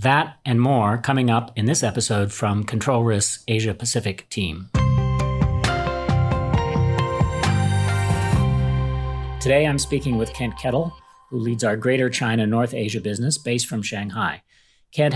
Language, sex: English, male